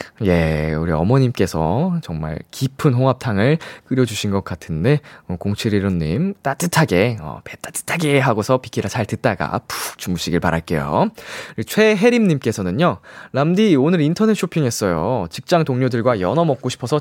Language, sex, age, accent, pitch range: Korean, male, 20-39, native, 105-170 Hz